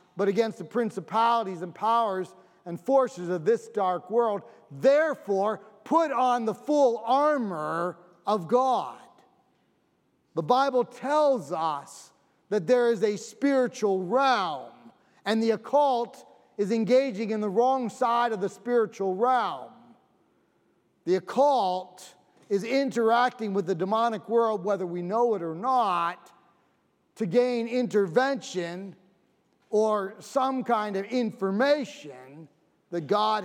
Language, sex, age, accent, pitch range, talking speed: English, male, 40-59, American, 180-240 Hz, 120 wpm